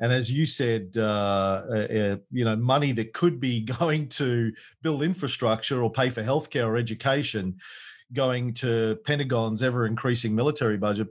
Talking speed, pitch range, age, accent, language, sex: 150 wpm, 110-145 Hz, 40-59, Australian, English, male